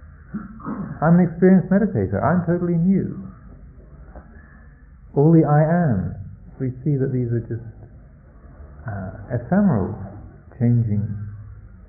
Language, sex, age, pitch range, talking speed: English, male, 50-69, 85-120 Hz, 100 wpm